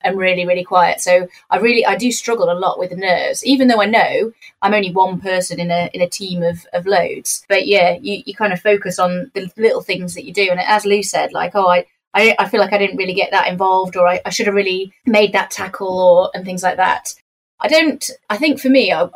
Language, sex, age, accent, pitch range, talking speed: English, female, 30-49, British, 180-225 Hz, 255 wpm